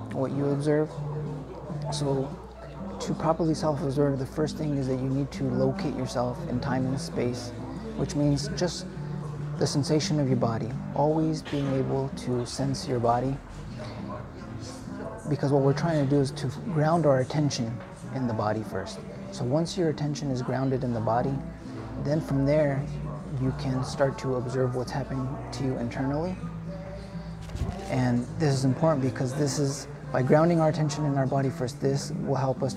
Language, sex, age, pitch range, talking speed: English, male, 30-49, 130-150 Hz, 170 wpm